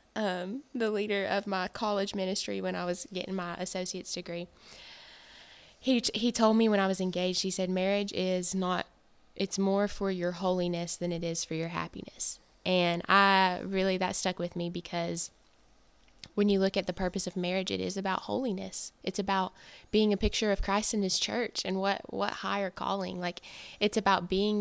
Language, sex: English, female